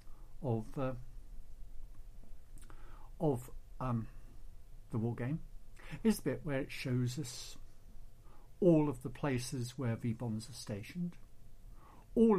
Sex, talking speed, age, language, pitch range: male, 110 wpm, 60-79, English, 110-155 Hz